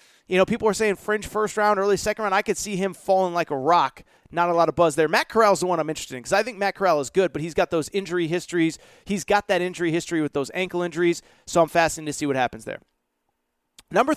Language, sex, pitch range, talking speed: English, male, 170-225 Hz, 270 wpm